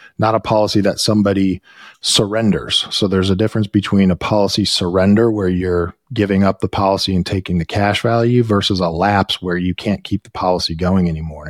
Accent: American